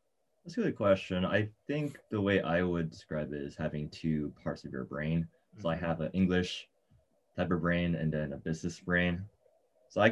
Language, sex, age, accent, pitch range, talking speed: English, male, 20-39, American, 80-95 Hz, 200 wpm